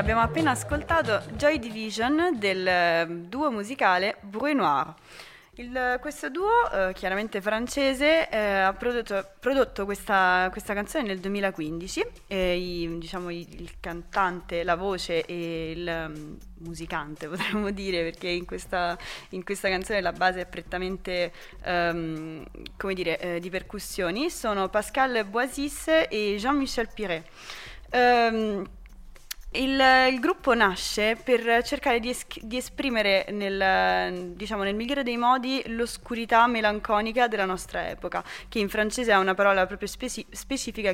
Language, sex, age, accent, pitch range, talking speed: Italian, female, 20-39, native, 185-245 Hz, 125 wpm